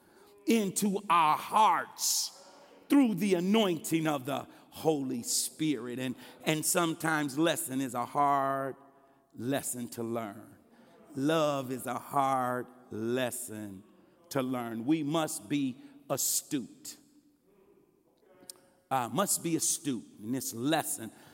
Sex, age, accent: male, 50-69, American